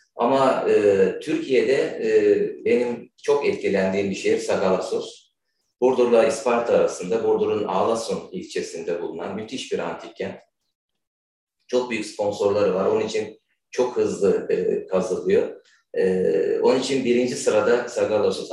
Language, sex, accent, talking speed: Turkish, male, native, 120 wpm